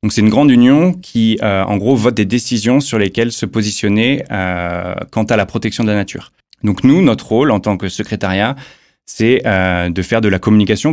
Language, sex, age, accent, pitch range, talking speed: French, male, 20-39, French, 100-115 Hz, 210 wpm